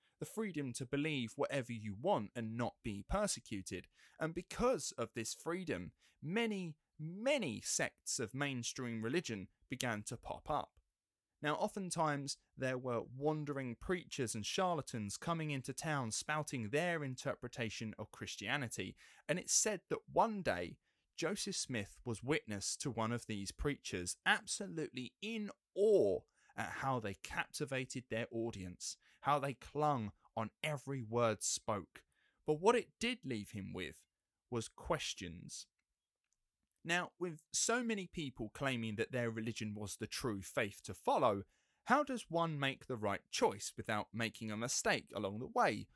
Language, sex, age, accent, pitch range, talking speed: English, male, 20-39, British, 110-155 Hz, 145 wpm